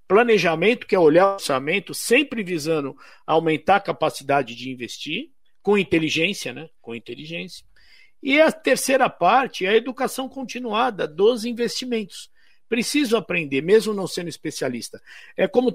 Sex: male